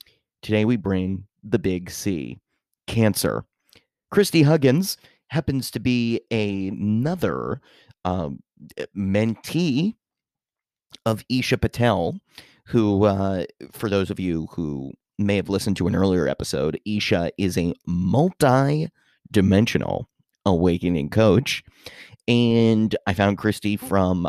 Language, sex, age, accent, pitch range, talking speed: English, male, 30-49, American, 90-120 Hz, 105 wpm